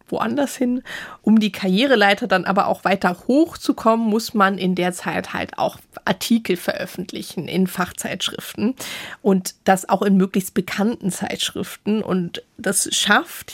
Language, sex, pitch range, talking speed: German, female, 190-220 Hz, 135 wpm